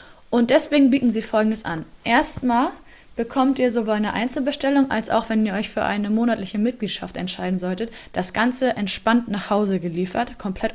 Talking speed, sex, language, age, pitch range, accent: 165 wpm, female, German, 20-39, 195-240 Hz, German